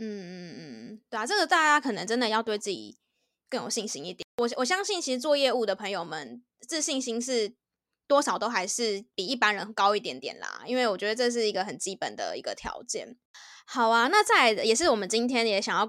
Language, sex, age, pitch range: Chinese, female, 20-39, 215-275 Hz